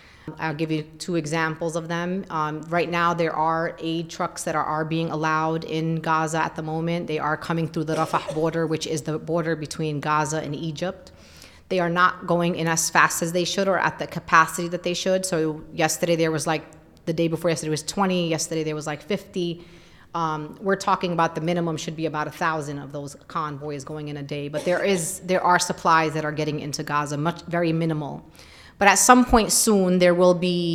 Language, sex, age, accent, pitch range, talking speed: English, female, 30-49, American, 160-180 Hz, 220 wpm